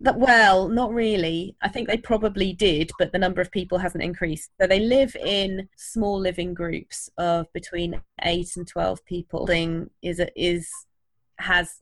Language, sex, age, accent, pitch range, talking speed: English, female, 20-39, British, 170-195 Hz, 175 wpm